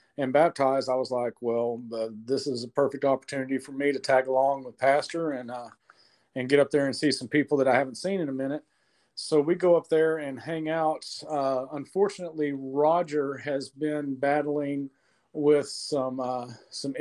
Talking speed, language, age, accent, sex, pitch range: 190 wpm, English, 40-59, American, male, 130-150 Hz